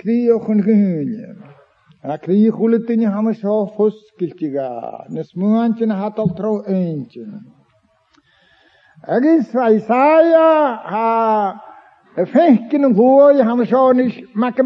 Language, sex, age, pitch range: English, male, 60-79, 200-275 Hz